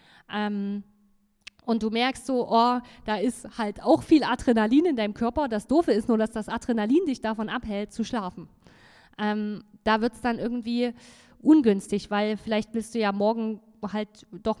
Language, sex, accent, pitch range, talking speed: German, female, German, 215-255 Hz, 175 wpm